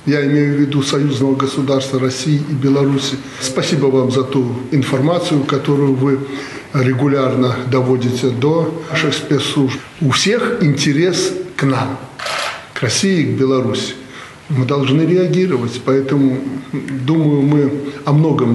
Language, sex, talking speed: Russian, male, 125 wpm